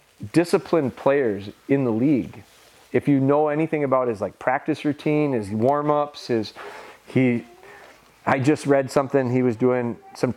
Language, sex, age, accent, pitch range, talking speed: English, male, 40-59, American, 115-145 Hz, 150 wpm